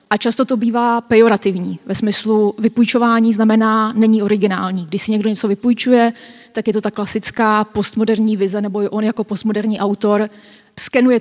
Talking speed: 160 wpm